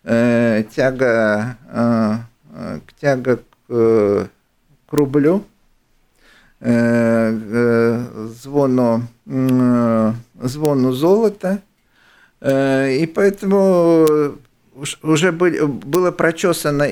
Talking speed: 55 wpm